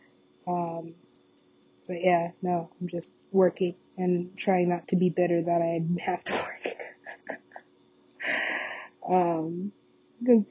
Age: 20-39